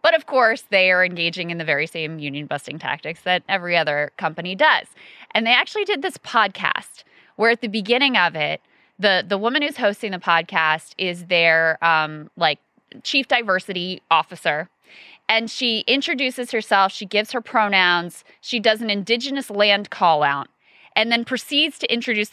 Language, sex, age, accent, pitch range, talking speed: English, female, 20-39, American, 170-235 Hz, 170 wpm